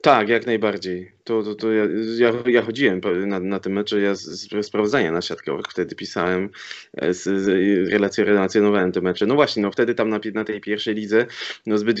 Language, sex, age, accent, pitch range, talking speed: Polish, male, 20-39, native, 105-110 Hz, 190 wpm